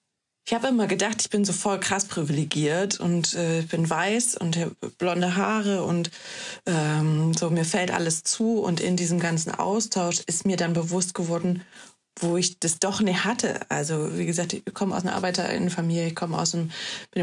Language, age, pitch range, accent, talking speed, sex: German, 20-39, 170-205 Hz, German, 195 wpm, female